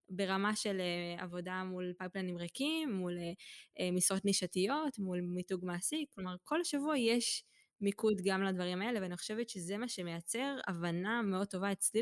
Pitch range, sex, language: 180-235 Hz, female, Hebrew